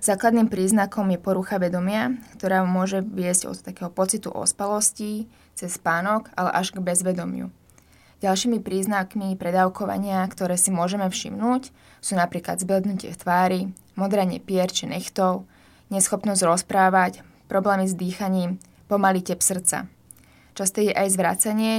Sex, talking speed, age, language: female, 120 wpm, 20-39, Slovak